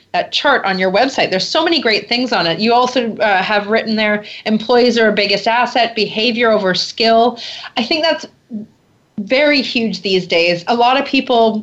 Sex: female